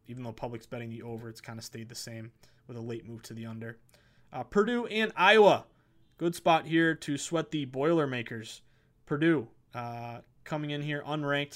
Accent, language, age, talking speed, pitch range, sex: American, English, 20-39, 185 wpm, 120-150 Hz, male